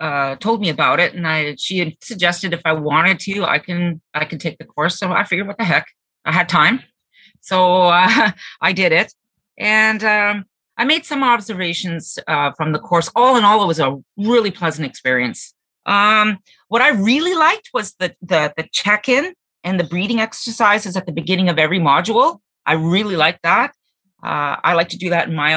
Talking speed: 200 wpm